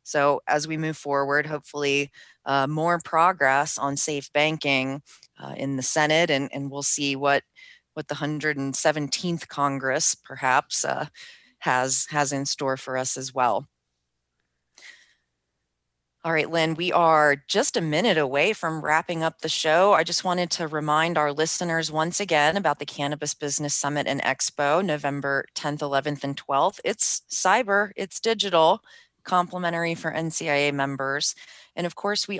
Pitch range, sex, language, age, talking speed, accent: 140-165 Hz, female, English, 30-49, 150 wpm, American